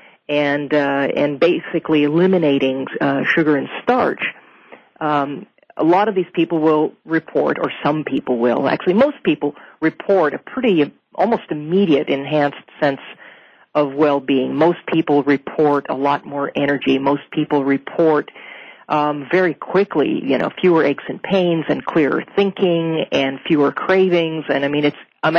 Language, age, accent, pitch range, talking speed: English, 40-59, American, 145-170 Hz, 150 wpm